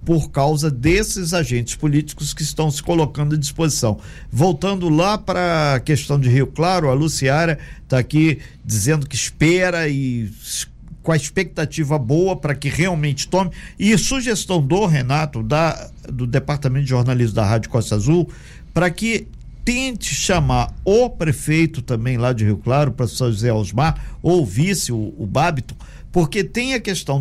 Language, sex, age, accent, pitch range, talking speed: Portuguese, male, 50-69, Brazilian, 130-170 Hz, 160 wpm